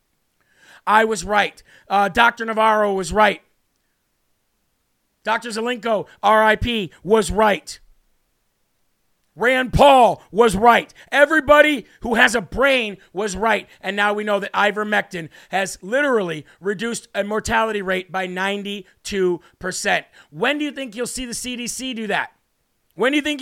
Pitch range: 205-245 Hz